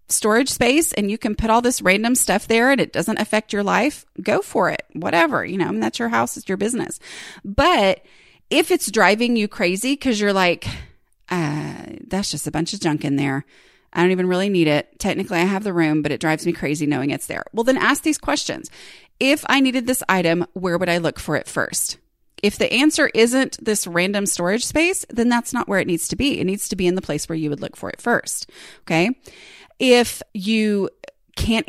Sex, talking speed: female, 225 wpm